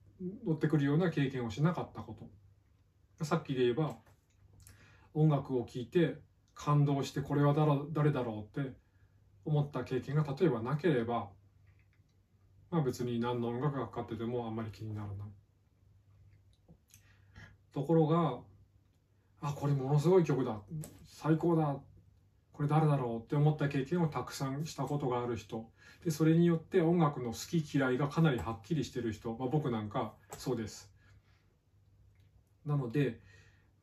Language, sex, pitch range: Japanese, male, 100-145 Hz